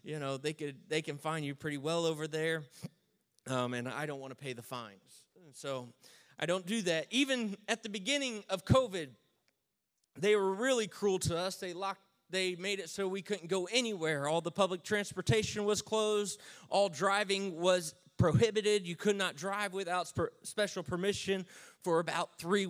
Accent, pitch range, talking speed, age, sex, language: American, 150-195 Hz, 180 wpm, 30-49, male, English